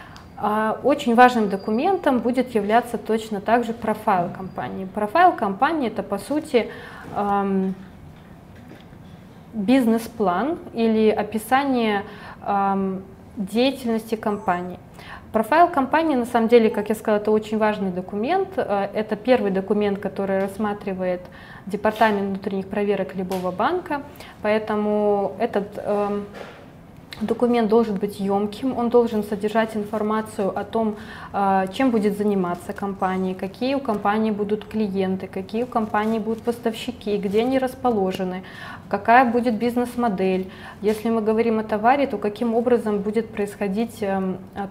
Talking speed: 115 wpm